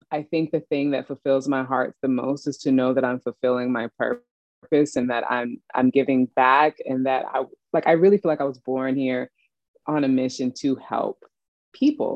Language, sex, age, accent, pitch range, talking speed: English, female, 20-39, American, 130-145 Hz, 205 wpm